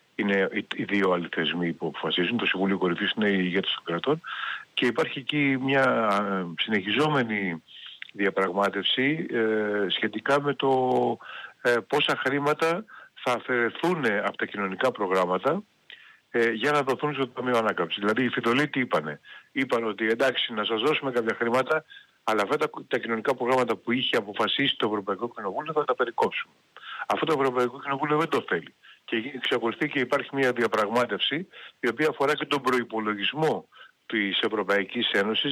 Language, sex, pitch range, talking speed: Greek, male, 105-140 Hz, 145 wpm